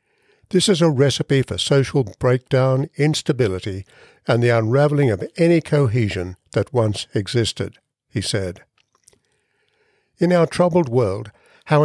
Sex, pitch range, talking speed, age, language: male, 115-150 Hz, 120 wpm, 60-79, English